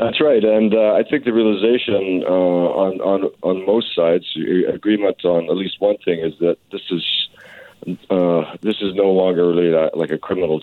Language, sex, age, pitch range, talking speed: English, male, 50-69, 75-95 Hz, 185 wpm